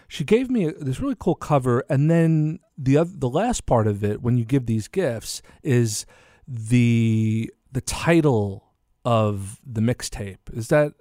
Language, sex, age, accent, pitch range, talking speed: English, male, 40-59, American, 105-145 Hz, 165 wpm